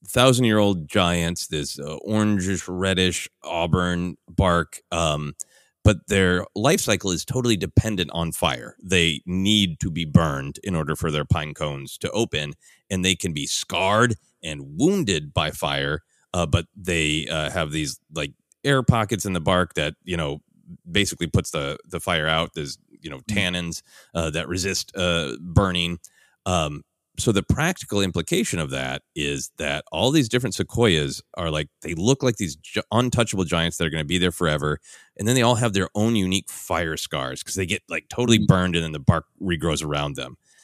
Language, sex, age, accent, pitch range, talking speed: English, male, 30-49, American, 80-105 Hz, 180 wpm